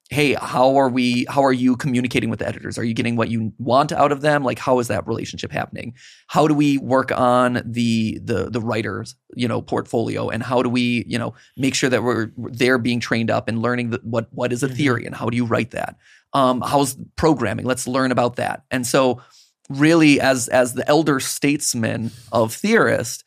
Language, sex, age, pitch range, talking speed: English, male, 20-39, 120-140 Hz, 215 wpm